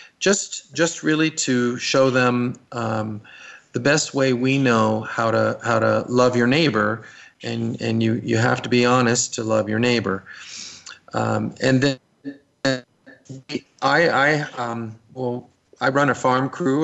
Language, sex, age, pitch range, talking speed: English, male, 40-59, 115-130 Hz, 155 wpm